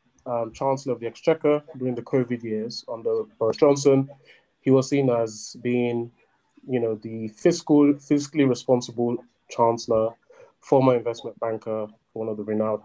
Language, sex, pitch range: English, male, 110-135 Hz